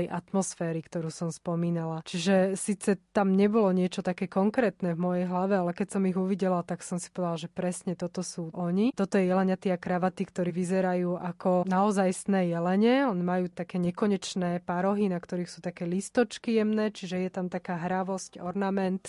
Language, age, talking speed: Slovak, 20-39, 175 wpm